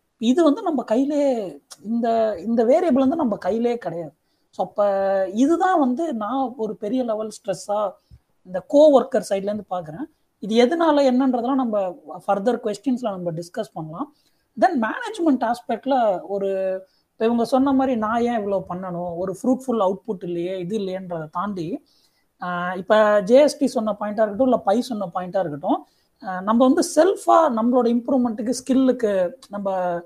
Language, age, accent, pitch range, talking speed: Tamil, 30-49, native, 195-265 Hz, 140 wpm